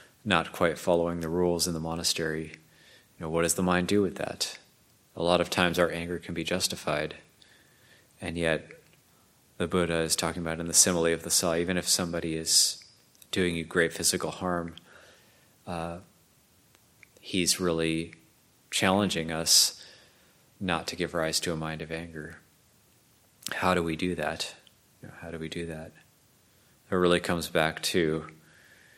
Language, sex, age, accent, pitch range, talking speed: English, male, 30-49, American, 80-90 Hz, 155 wpm